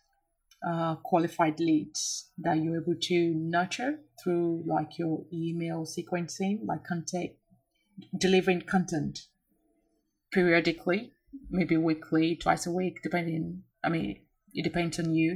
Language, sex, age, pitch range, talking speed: English, female, 30-49, 160-185 Hz, 115 wpm